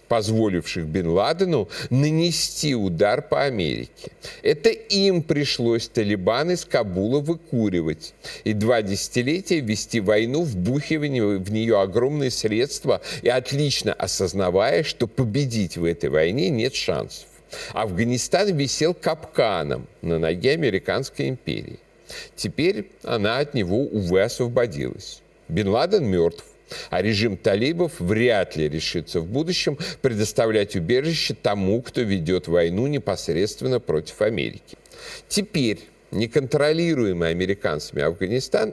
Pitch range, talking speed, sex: 100-150 Hz, 105 wpm, male